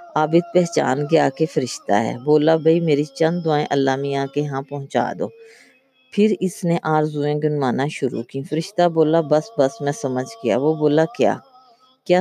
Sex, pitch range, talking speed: female, 140-175 Hz, 70 wpm